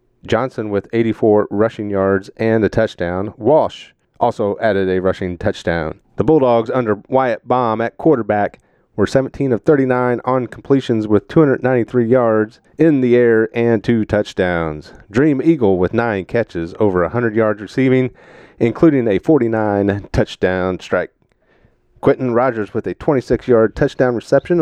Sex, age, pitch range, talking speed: male, 40-59, 105-130 Hz, 140 wpm